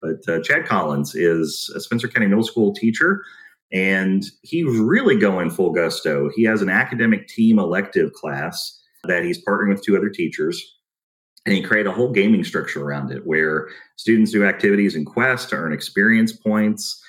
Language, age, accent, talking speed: English, 30-49, American, 175 wpm